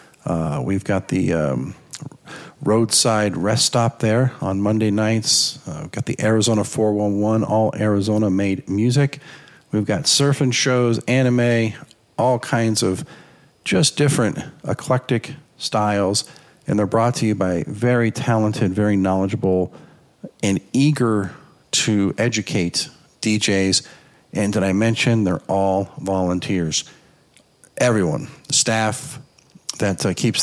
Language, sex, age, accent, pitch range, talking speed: English, male, 50-69, American, 100-125 Hz, 120 wpm